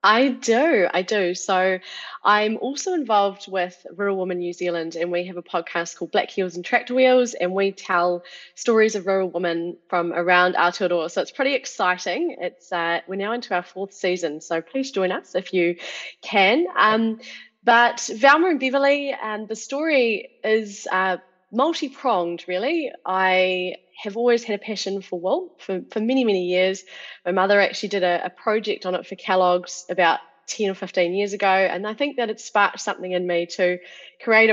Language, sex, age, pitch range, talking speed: English, female, 20-39, 180-225 Hz, 185 wpm